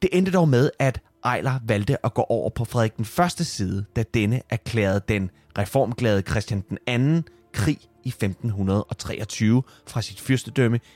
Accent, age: native, 30-49